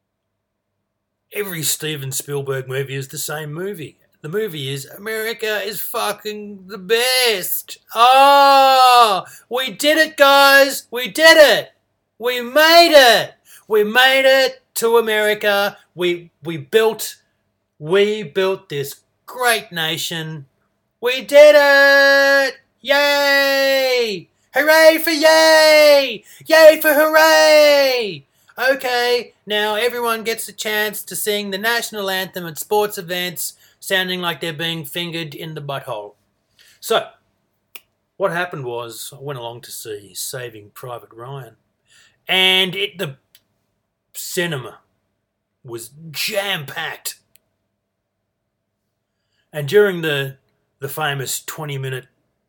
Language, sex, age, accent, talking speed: English, male, 30-49, Australian, 110 wpm